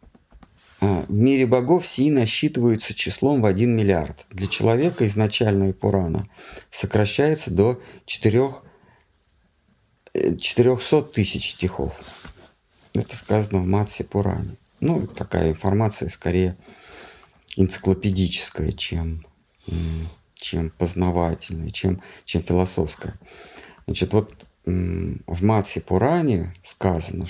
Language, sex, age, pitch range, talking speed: Russian, male, 50-69, 90-115 Hz, 90 wpm